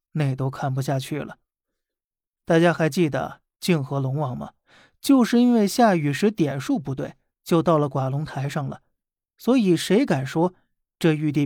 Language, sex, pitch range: Chinese, male, 145-190 Hz